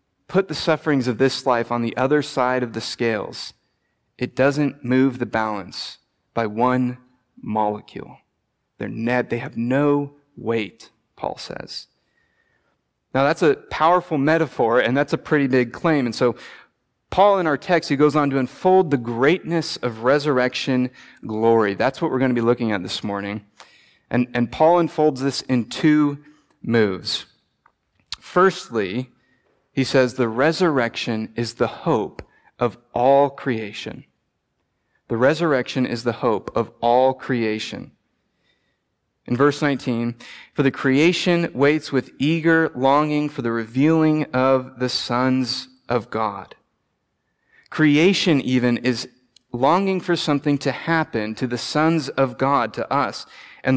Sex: male